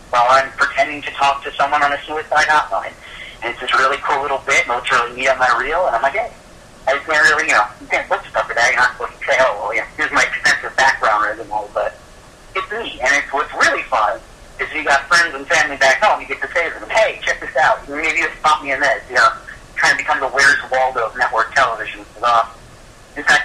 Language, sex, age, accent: English, male, 50-69, American